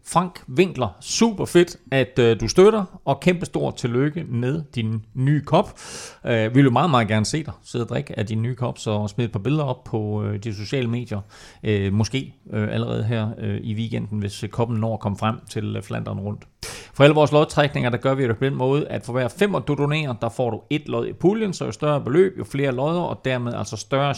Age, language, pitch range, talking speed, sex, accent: 30-49, Danish, 115-165 Hz, 215 wpm, male, native